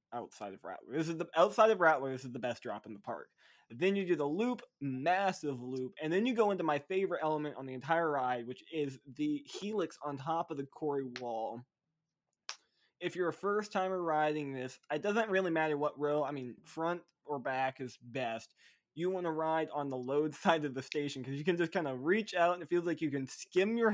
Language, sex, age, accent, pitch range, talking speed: English, male, 20-39, American, 135-165 Hz, 230 wpm